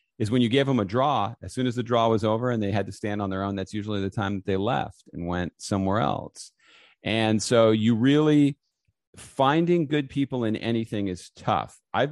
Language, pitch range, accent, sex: English, 95-125 Hz, American, male